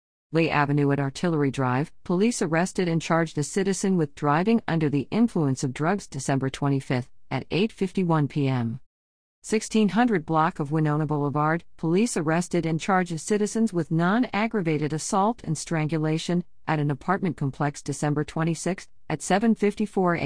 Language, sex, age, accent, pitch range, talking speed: English, female, 50-69, American, 150-205 Hz, 135 wpm